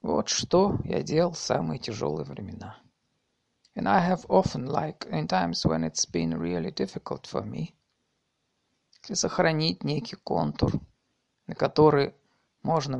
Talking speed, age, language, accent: 130 wpm, 50-69, Russian, native